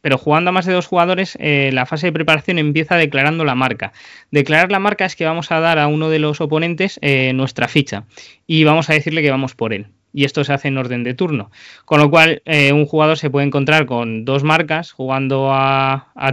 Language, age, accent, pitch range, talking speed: Spanish, 20-39, Spanish, 135-165 Hz, 230 wpm